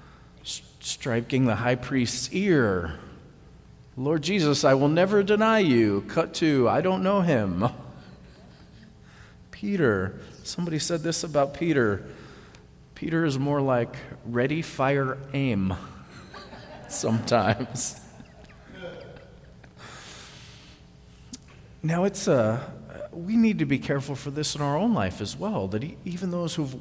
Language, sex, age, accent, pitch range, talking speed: English, male, 40-59, American, 105-145 Hz, 120 wpm